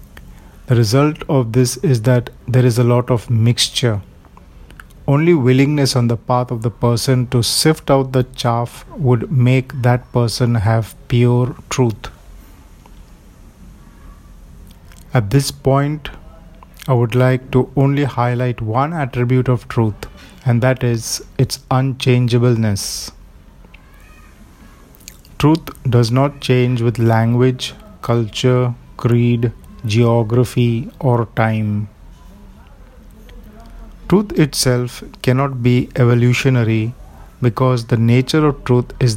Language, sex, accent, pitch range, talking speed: Hindi, male, native, 105-130 Hz, 110 wpm